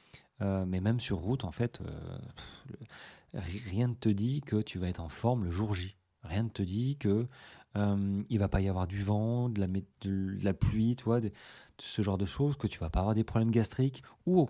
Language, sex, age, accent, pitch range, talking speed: French, male, 30-49, French, 95-125 Hz, 240 wpm